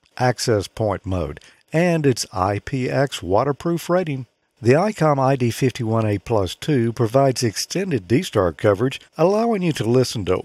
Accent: American